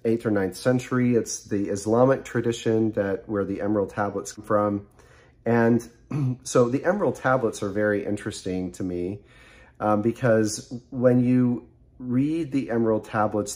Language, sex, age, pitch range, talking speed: English, male, 40-59, 100-115 Hz, 145 wpm